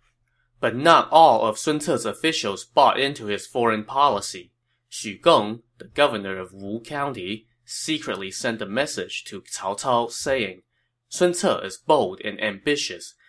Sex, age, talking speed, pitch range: male, 20-39, 150 wpm, 105-130 Hz